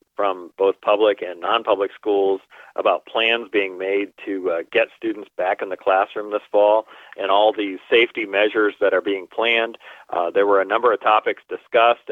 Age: 40-59